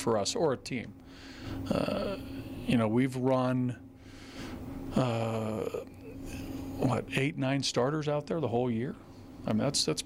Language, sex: English, male